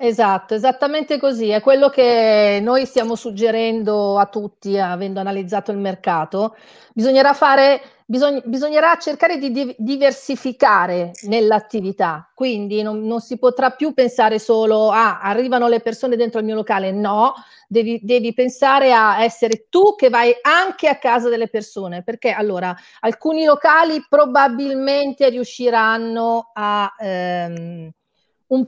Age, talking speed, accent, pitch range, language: 40-59, 130 wpm, native, 215-270 Hz, Italian